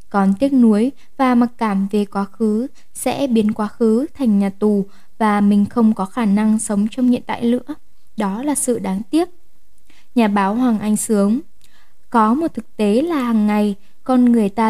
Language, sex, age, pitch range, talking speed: Vietnamese, female, 10-29, 205-255 Hz, 190 wpm